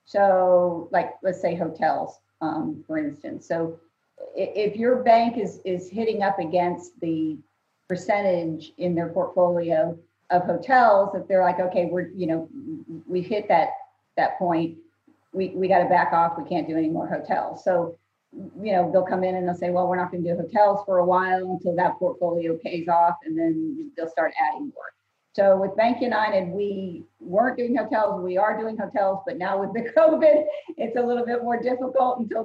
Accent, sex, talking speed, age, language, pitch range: American, female, 190 wpm, 40-59, English, 180-225 Hz